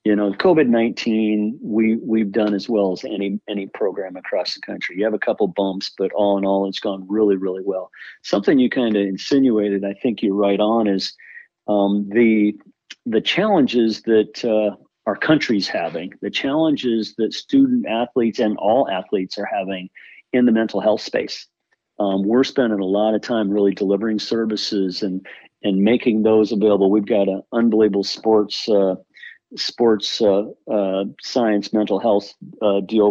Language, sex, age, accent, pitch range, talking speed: English, male, 50-69, American, 100-115 Hz, 170 wpm